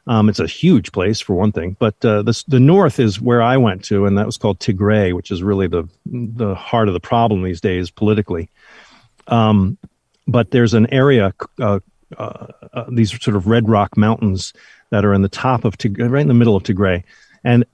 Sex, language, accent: male, English, American